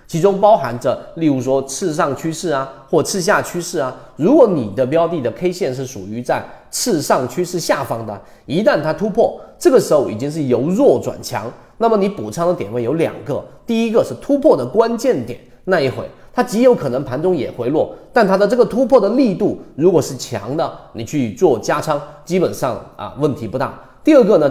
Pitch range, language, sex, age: 120-180 Hz, Chinese, male, 30-49